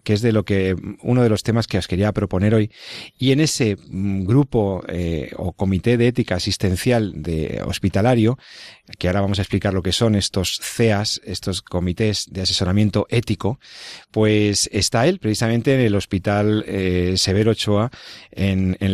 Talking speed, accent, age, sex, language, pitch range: 170 wpm, Spanish, 40-59, male, Spanish, 95-120 Hz